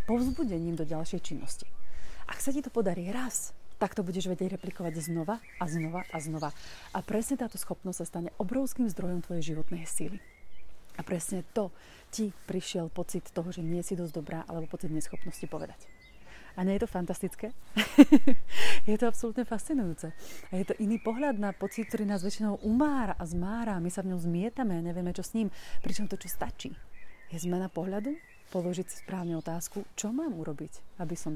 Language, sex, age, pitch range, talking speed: Slovak, female, 30-49, 170-215 Hz, 180 wpm